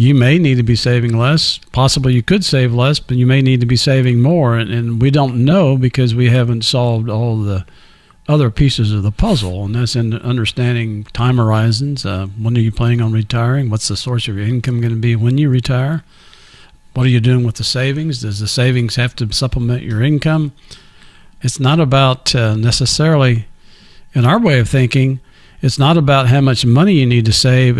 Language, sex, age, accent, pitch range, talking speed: English, male, 50-69, American, 115-135 Hz, 205 wpm